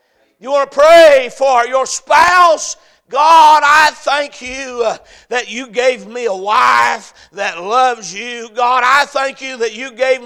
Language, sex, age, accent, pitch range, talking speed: English, male, 50-69, American, 185-290 Hz, 160 wpm